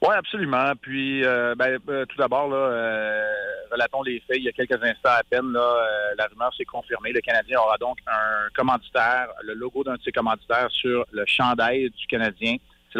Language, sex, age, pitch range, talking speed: French, male, 30-49, 115-130 Hz, 200 wpm